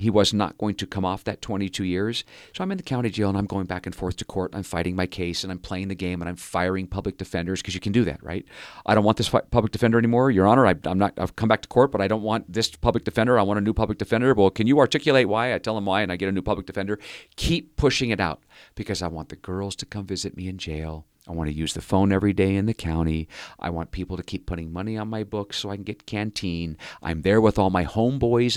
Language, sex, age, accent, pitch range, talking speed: English, male, 40-59, American, 90-105 Hz, 290 wpm